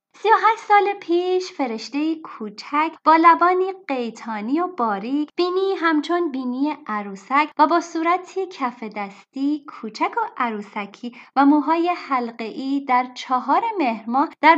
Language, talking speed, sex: Persian, 125 wpm, female